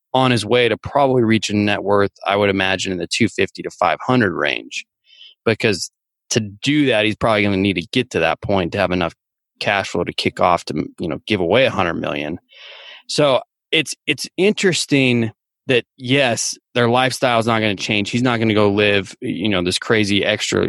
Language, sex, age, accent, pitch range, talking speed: English, male, 20-39, American, 100-125 Hz, 210 wpm